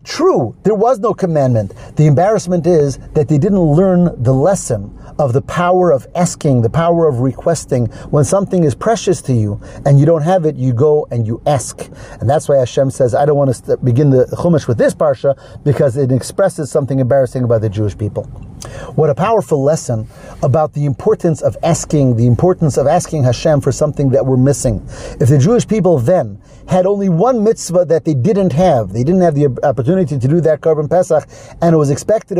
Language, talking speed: English, 200 wpm